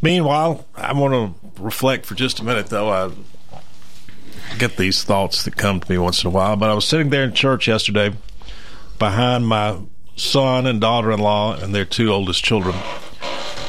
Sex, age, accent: male, 50-69, American